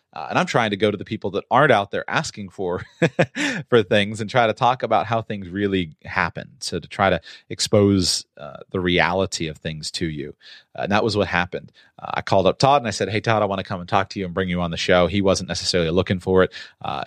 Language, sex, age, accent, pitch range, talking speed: English, male, 30-49, American, 90-110 Hz, 265 wpm